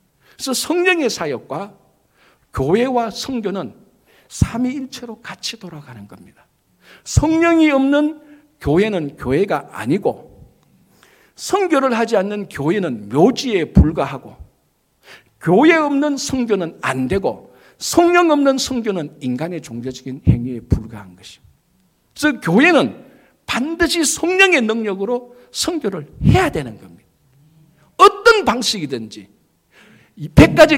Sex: male